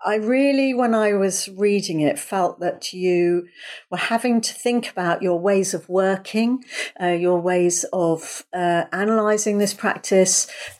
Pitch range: 175-220 Hz